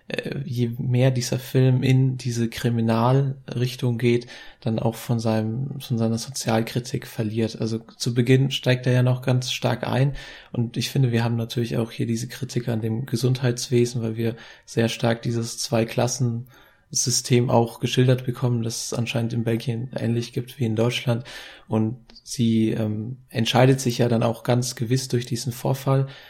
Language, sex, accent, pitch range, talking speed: German, male, German, 115-130 Hz, 160 wpm